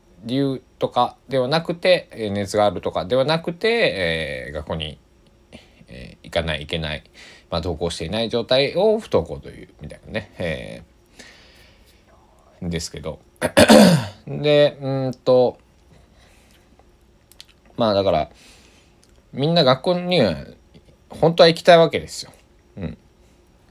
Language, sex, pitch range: Japanese, male, 85-130 Hz